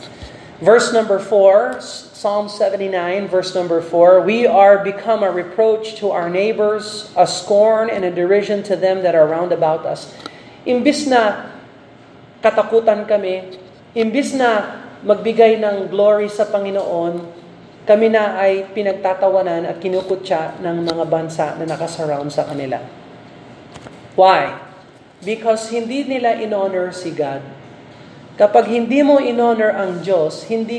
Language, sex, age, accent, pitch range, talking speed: Filipino, male, 40-59, native, 180-220 Hz, 130 wpm